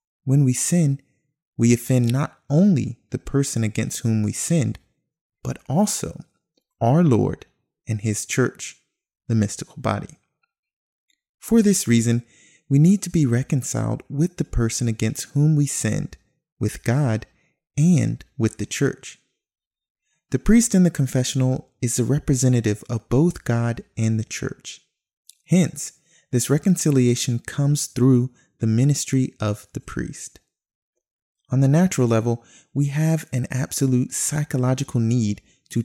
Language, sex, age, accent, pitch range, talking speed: English, male, 30-49, American, 120-155 Hz, 130 wpm